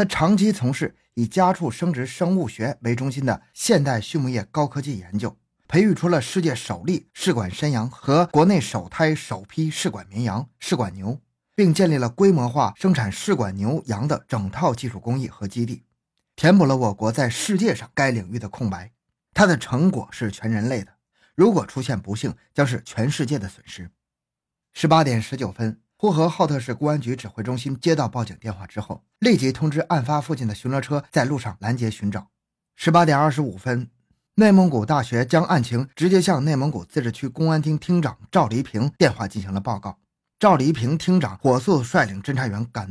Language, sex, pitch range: Chinese, male, 115-160 Hz